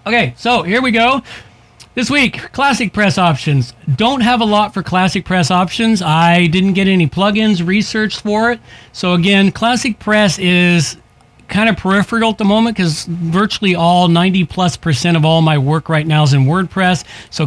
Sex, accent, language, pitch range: male, American, English, 145-185 Hz